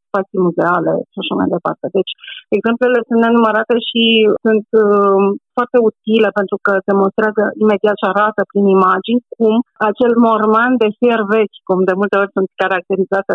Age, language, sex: 30-49, Romanian, female